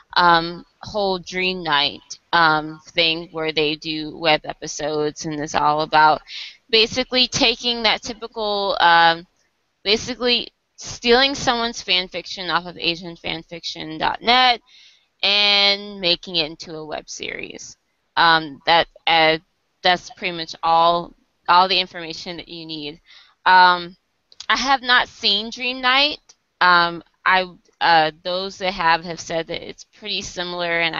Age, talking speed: 20-39, 130 wpm